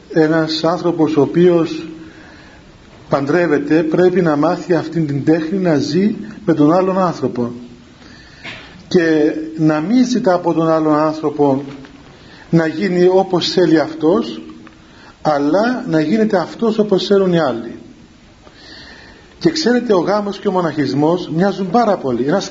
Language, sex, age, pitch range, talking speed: Greek, male, 40-59, 155-200 Hz, 130 wpm